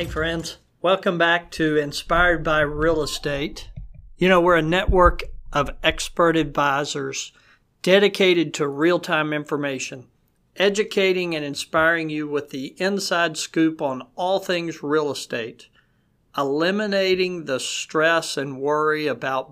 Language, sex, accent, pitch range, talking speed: English, male, American, 150-175 Hz, 125 wpm